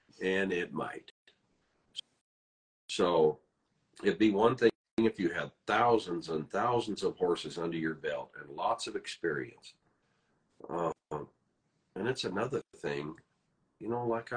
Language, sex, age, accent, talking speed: English, male, 50-69, American, 135 wpm